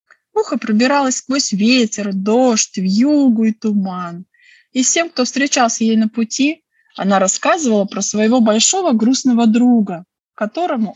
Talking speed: 125 wpm